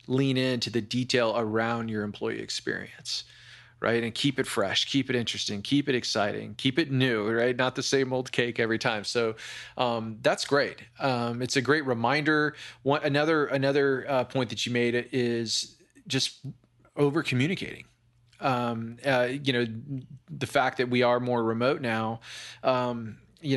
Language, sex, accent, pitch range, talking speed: English, male, American, 115-135 Hz, 165 wpm